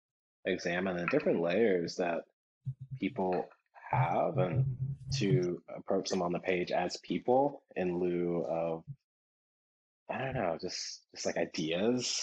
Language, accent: English, American